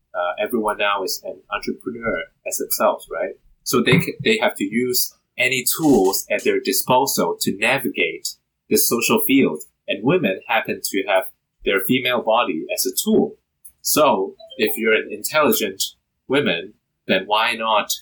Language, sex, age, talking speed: English, male, 30-49, 155 wpm